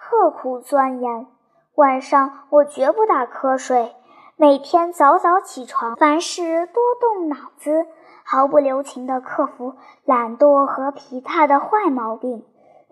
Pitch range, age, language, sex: 260-345 Hz, 10-29, Chinese, male